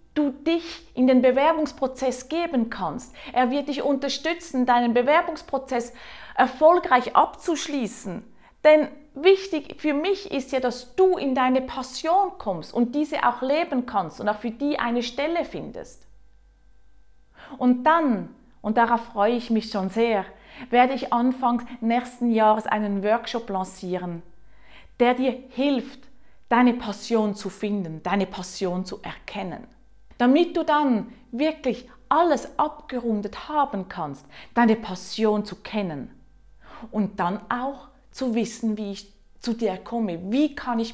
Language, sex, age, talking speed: German, female, 30-49, 135 wpm